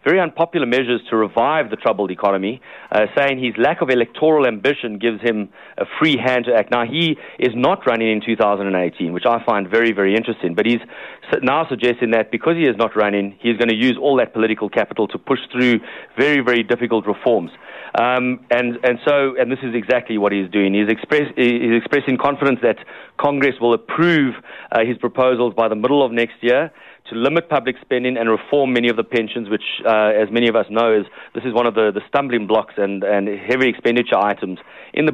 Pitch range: 110-130 Hz